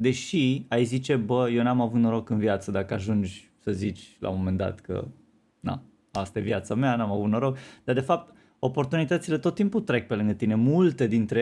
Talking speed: 205 wpm